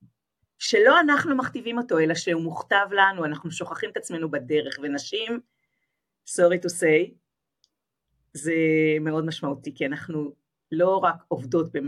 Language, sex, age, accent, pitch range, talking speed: Hebrew, female, 40-59, native, 150-180 Hz, 125 wpm